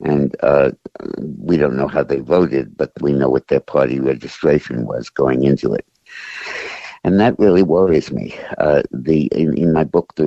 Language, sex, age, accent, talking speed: English, male, 60-79, American, 180 wpm